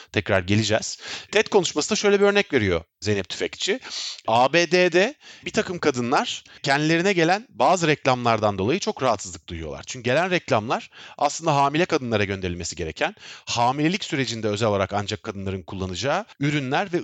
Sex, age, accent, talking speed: male, 40-59, native, 140 wpm